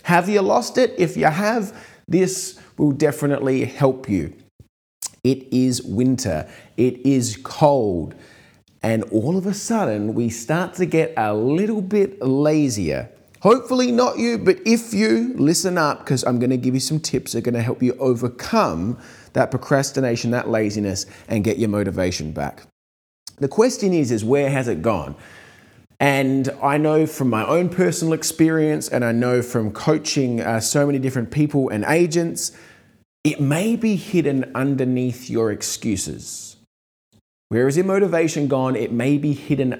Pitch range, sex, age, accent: 115-165 Hz, male, 30-49, Australian